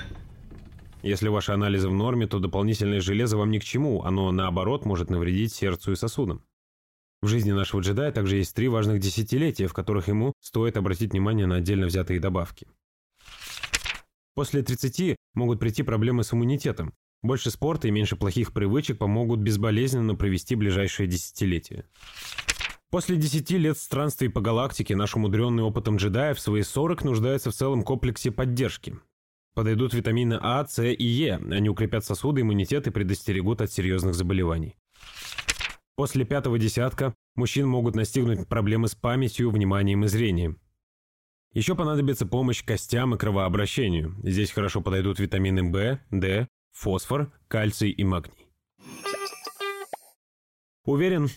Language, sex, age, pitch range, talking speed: Russian, male, 20-39, 100-125 Hz, 140 wpm